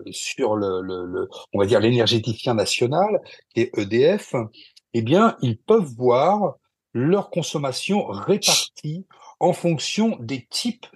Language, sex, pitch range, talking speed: French, male, 110-150 Hz, 110 wpm